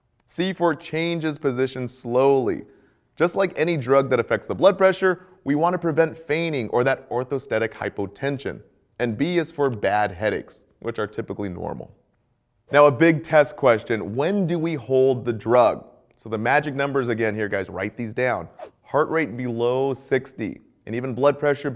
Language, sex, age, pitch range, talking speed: English, male, 30-49, 115-150 Hz, 170 wpm